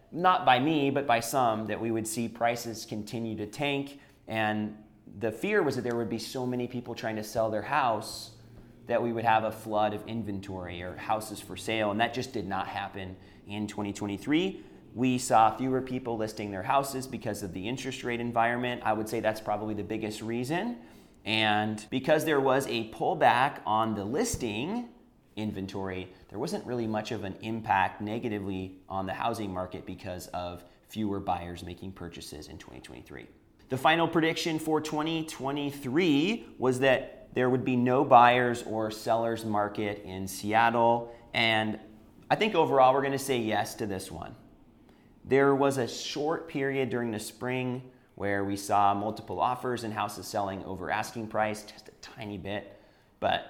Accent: American